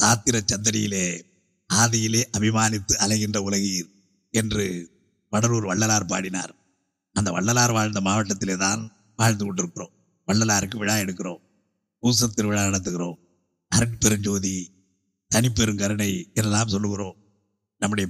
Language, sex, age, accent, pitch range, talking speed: Tamil, male, 50-69, native, 100-115 Hz, 95 wpm